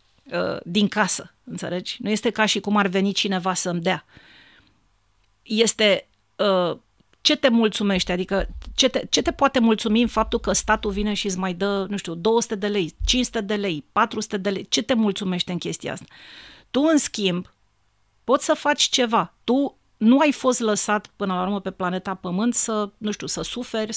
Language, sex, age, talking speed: Romanian, female, 40-59, 185 wpm